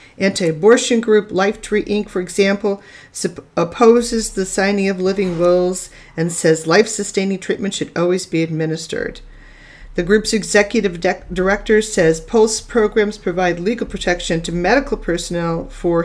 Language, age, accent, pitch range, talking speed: English, 40-59, American, 165-205 Hz, 140 wpm